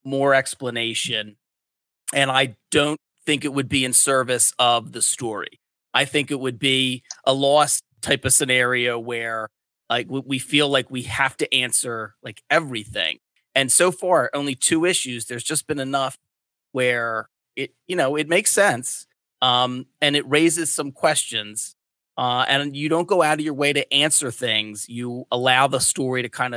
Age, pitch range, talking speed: 30-49, 120-145 Hz, 170 wpm